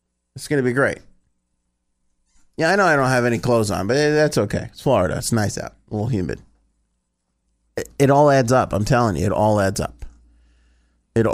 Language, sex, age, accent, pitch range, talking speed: English, male, 30-49, American, 85-130 Hz, 200 wpm